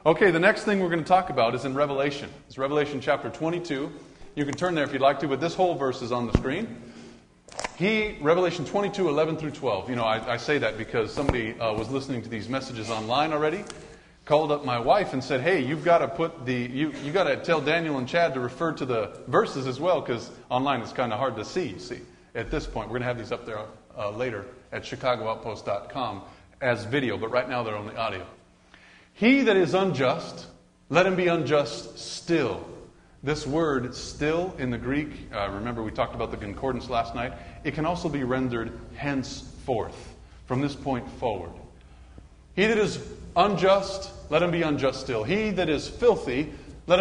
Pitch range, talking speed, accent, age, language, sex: 125-180 Hz, 205 wpm, American, 30-49, English, male